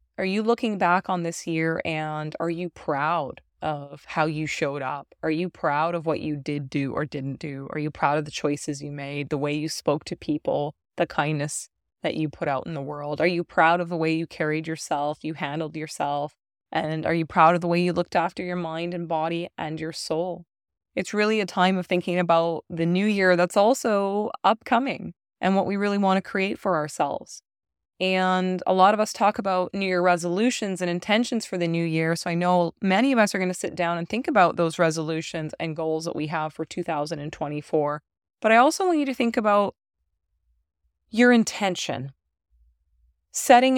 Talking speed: 205 wpm